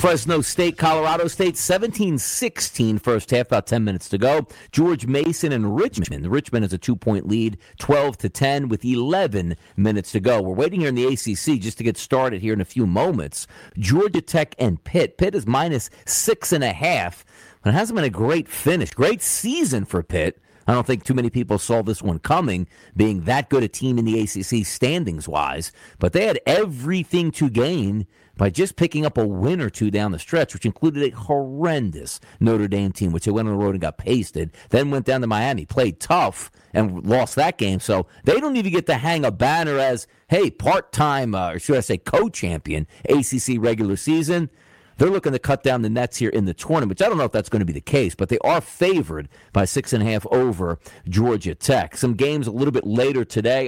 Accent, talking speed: American, 205 wpm